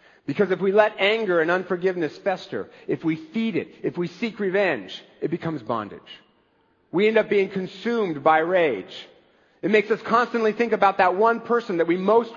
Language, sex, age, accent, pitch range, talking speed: English, male, 50-69, American, 165-210 Hz, 185 wpm